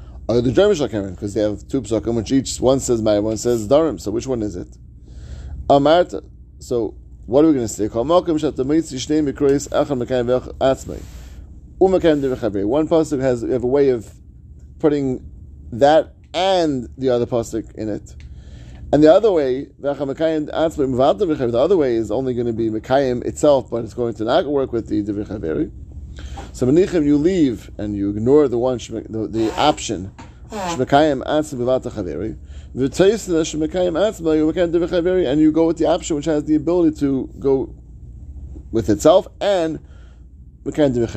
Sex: male